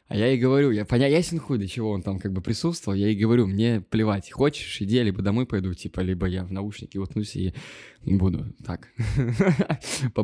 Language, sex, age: Russian, male, 20-39